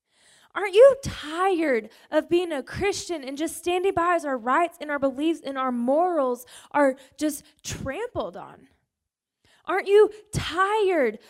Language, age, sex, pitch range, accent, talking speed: English, 20-39, female, 275-365 Hz, American, 145 wpm